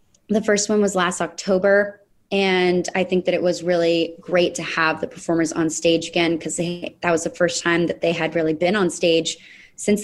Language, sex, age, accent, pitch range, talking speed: English, female, 20-39, American, 165-190 Hz, 210 wpm